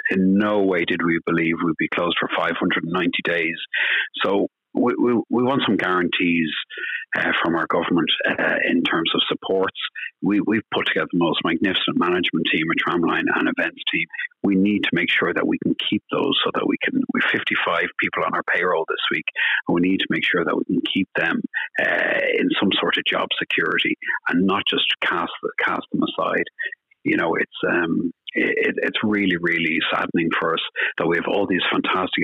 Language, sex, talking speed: English, male, 200 wpm